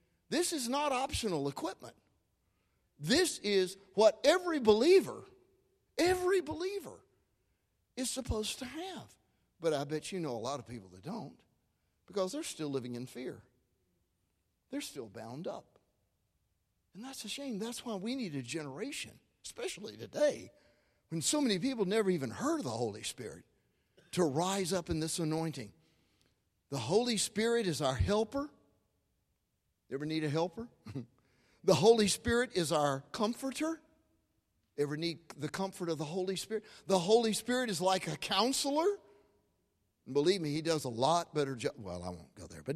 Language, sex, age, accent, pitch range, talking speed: English, male, 50-69, American, 155-255 Hz, 155 wpm